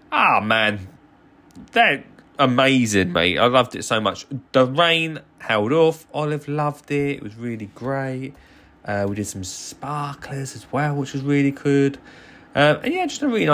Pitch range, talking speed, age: 115-175 Hz, 175 wpm, 20-39